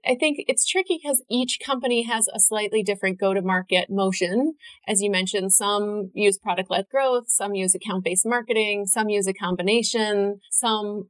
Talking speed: 180 wpm